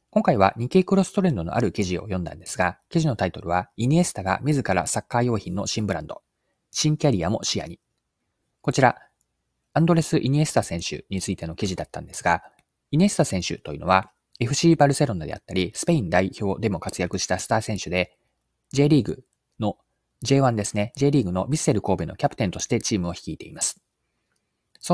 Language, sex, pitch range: Japanese, male, 95-140 Hz